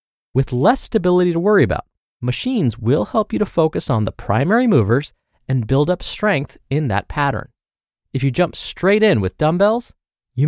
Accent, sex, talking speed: American, male, 180 wpm